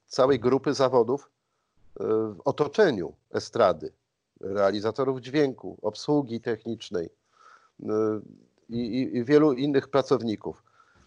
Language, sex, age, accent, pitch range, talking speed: Polish, male, 50-69, native, 110-130 Hz, 75 wpm